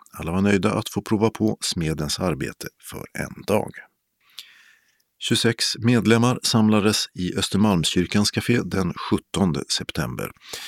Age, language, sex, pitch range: 50-69, Swedish, male, 85-110 Hz